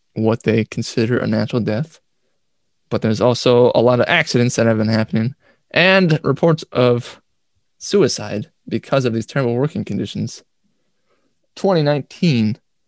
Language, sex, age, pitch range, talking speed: English, male, 20-39, 120-160 Hz, 130 wpm